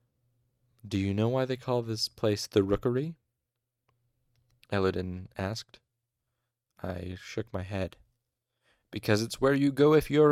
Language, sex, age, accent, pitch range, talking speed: English, male, 30-49, American, 100-125 Hz, 135 wpm